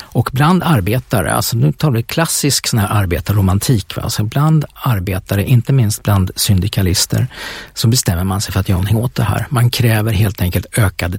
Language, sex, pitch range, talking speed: English, male, 100-125 Hz, 180 wpm